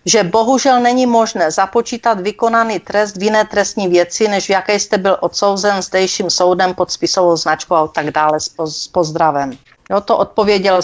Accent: native